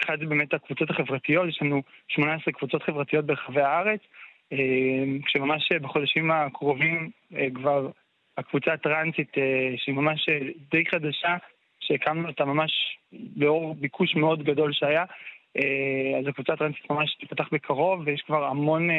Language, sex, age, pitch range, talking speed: Hebrew, male, 20-39, 140-165 Hz, 125 wpm